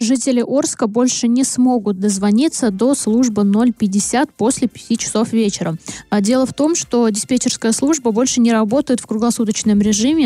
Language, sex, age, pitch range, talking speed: Russian, female, 20-39, 210-250 Hz, 145 wpm